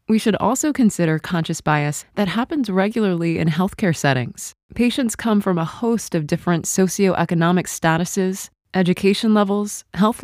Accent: American